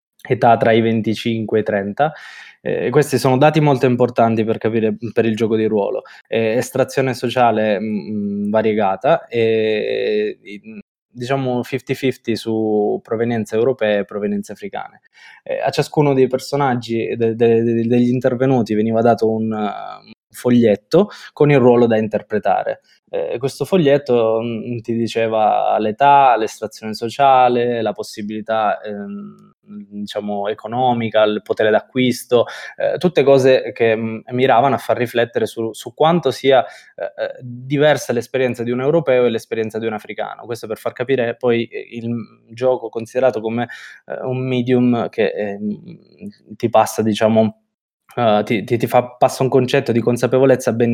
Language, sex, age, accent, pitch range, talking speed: Italian, male, 20-39, native, 110-130 Hz, 135 wpm